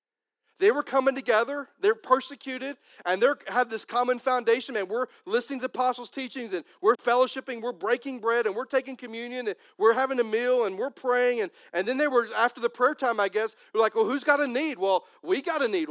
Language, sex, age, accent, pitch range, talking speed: English, male, 40-59, American, 220-300 Hz, 225 wpm